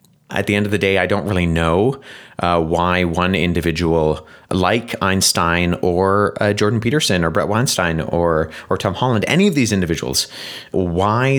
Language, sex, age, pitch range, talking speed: English, male, 30-49, 85-110 Hz, 170 wpm